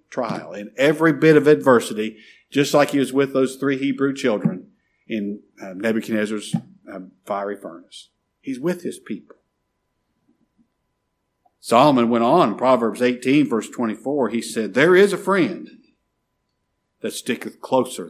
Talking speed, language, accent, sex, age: 135 wpm, English, American, male, 50-69